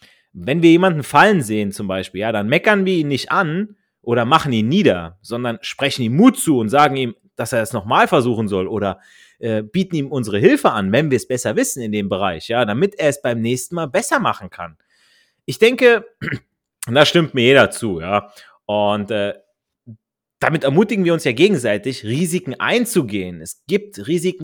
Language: German